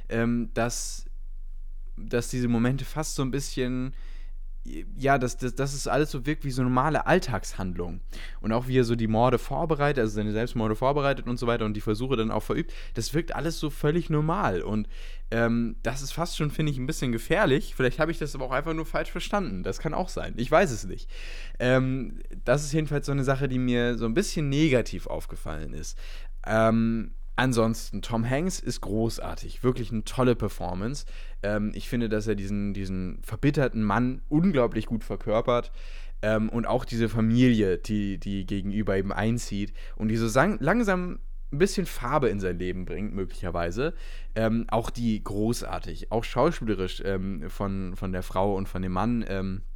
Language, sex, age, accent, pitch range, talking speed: German, male, 10-29, German, 105-135 Hz, 175 wpm